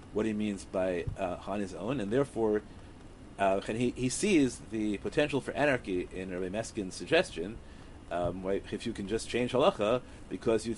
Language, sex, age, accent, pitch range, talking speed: English, male, 40-59, American, 100-130 Hz, 185 wpm